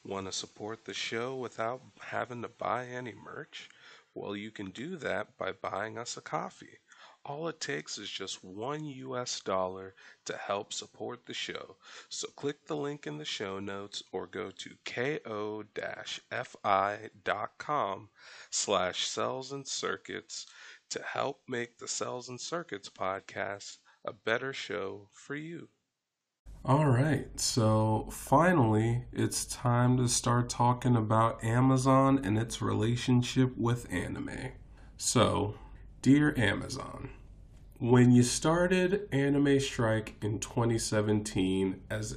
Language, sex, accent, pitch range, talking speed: English, male, American, 105-130 Hz, 125 wpm